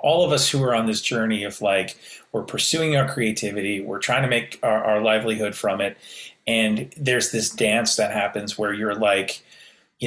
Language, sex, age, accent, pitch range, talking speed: English, male, 30-49, American, 105-125 Hz, 195 wpm